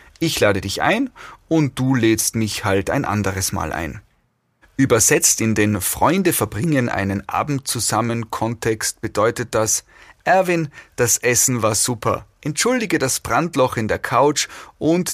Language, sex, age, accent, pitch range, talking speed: German, male, 30-49, German, 105-135 Hz, 145 wpm